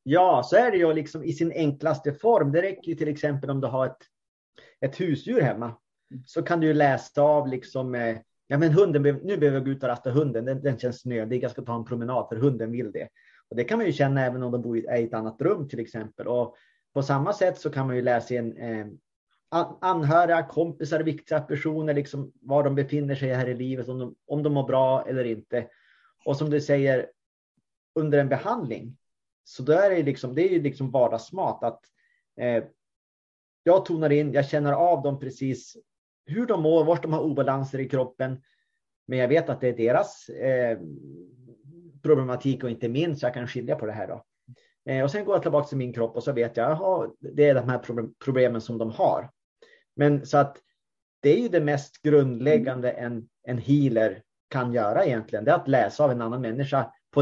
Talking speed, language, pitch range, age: 210 wpm, Swedish, 125-155 Hz, 30-49